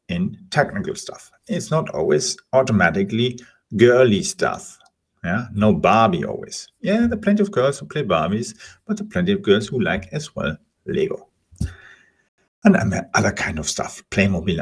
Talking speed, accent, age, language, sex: 160 wpm, German, 50-69, English, male